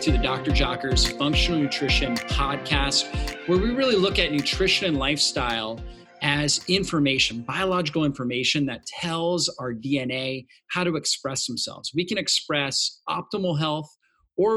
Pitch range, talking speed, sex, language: 125-160 Hz, 135 wpm, male, English